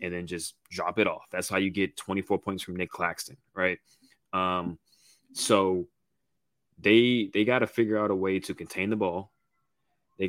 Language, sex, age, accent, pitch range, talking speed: English, male, 20-39, American, 90-105 Hz, 180 wpm